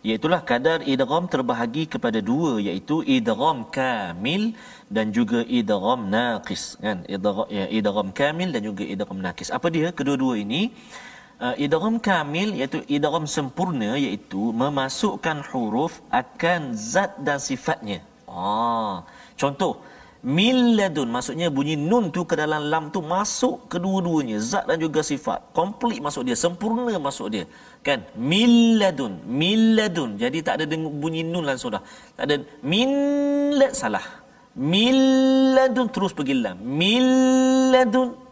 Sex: male